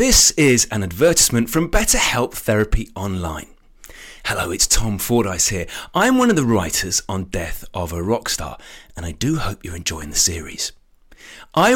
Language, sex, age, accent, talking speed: English, male, 30-49, British, 165 wpm